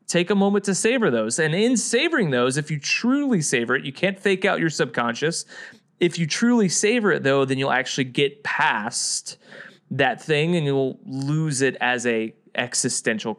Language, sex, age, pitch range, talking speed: English, male, 20-39, 125-175 Hz, 185 wpm